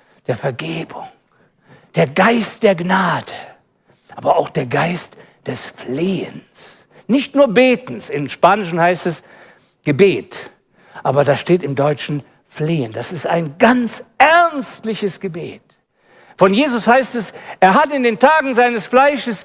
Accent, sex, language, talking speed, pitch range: German, male, German, 135 wpm, 205-310 Hz